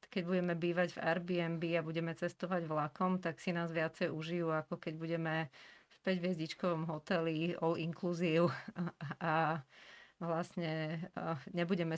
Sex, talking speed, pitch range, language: female, 130 wpm, 165-185 Hz, Slovak